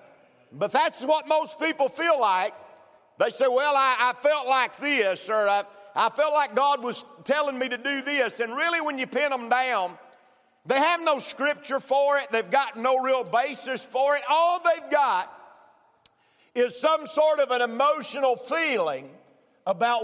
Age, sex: 50-69, male